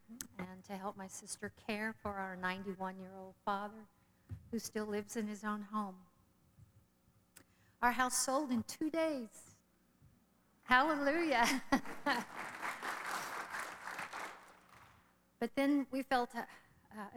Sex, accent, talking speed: female, American, 100 wpm